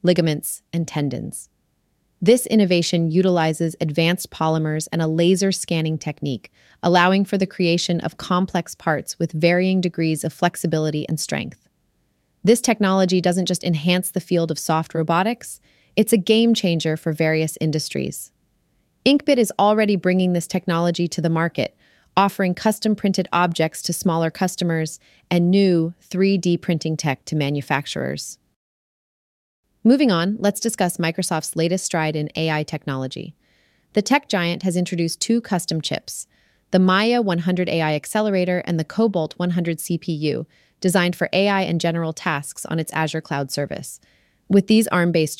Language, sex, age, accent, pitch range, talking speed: English, female, 30-49, American, 160-185 Hz, 145 wpm